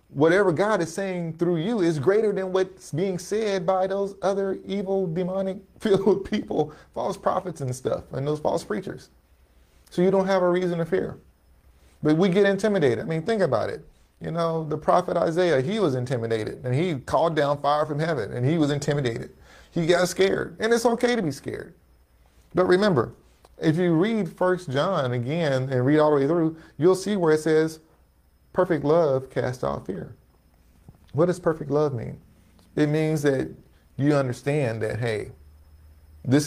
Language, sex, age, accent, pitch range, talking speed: English, male, 30-49, American, 115-175 Hz, 180 wpm